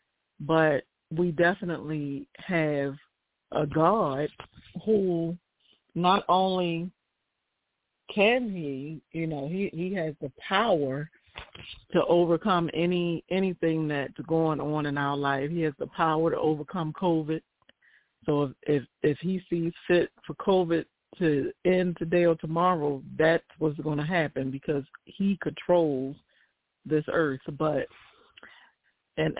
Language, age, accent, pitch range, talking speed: English, 40-59, American, 145-175 Hz, 120 wpm